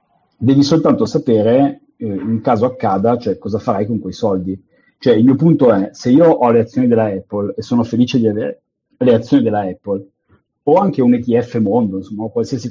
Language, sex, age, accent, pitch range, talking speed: Italian, male, 30-49, native, 105-135 Hz, 200 wpm